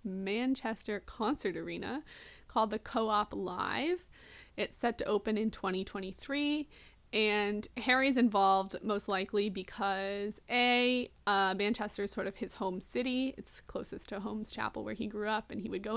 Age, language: 20-39, English